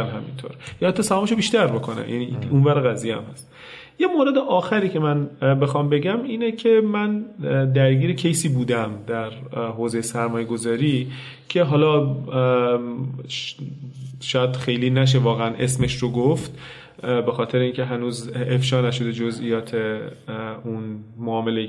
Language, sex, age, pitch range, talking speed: Persian, male, 30-49, 115-145 Hz, 125 wpm